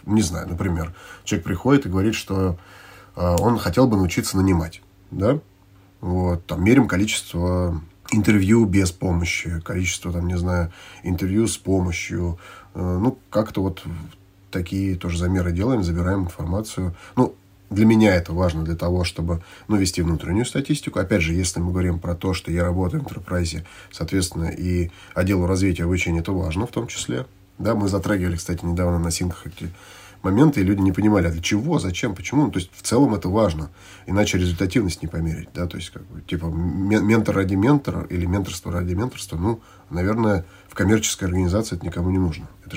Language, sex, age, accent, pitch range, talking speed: Russian, male, 30-49, native, 90-100 Hz, 180 wpm